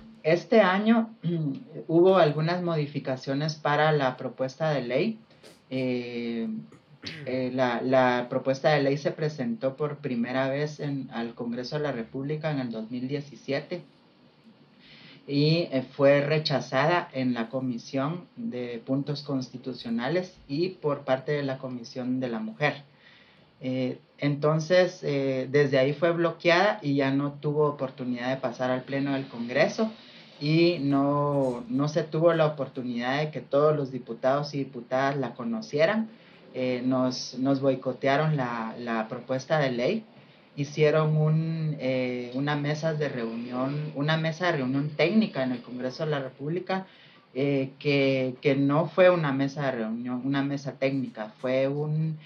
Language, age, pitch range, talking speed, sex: Spanish, 30-49, 130-155 Hz, 140 wpm, male